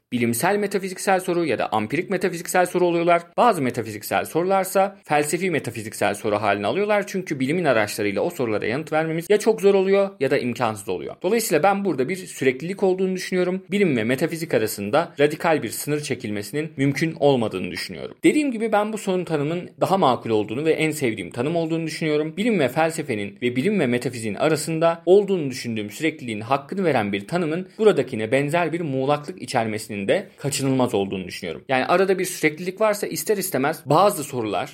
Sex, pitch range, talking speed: male, 125-190 Hz, 170 wpm